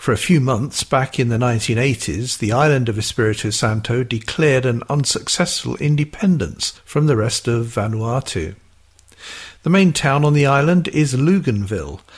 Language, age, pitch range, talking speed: English, 50-69, 110-145 Hz, 150 wpm